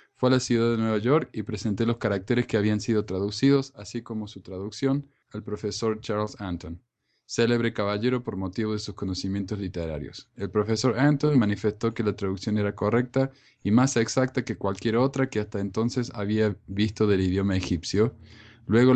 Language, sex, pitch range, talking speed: Spanish, male, 100-120 Hz, 175 wpm